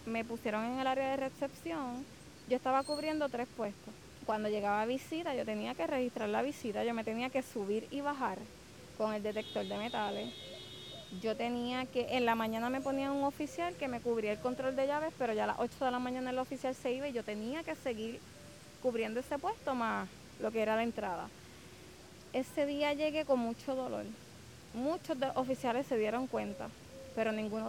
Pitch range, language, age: 225-270 Hz, English, 20-39